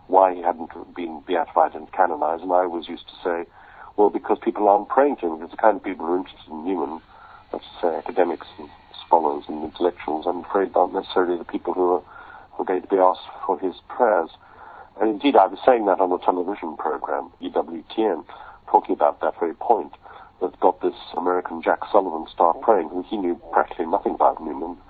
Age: 50-69